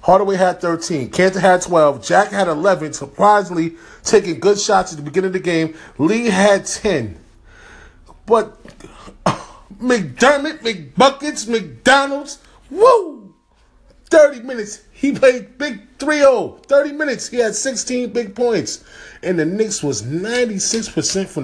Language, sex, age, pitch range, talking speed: English, male, 30-49, 170-225 Hz, 130 wpm